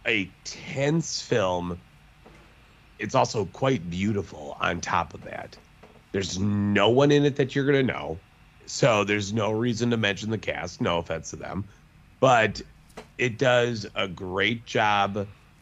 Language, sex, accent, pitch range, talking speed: English, male, American, 100-135 Hz, 150 wpm